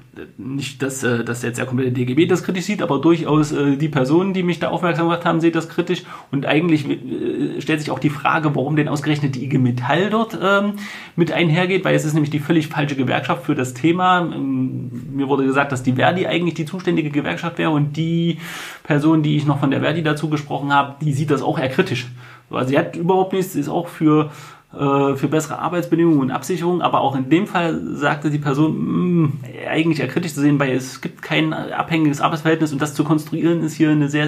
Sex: male